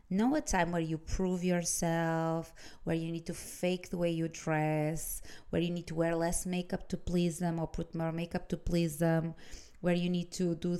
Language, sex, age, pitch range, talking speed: English, female, 20-39, 165-200 Hz, 210 wpm